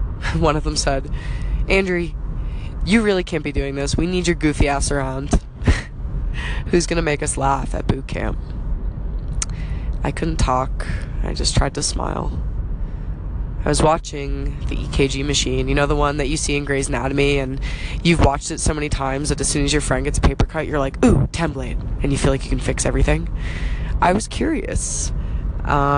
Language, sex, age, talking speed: English, female, 20-39, 190 wpm